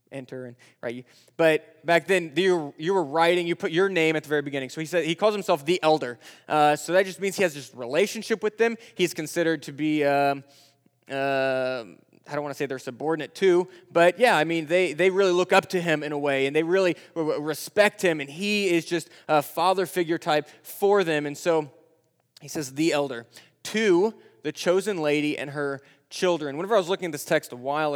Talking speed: 220 wpm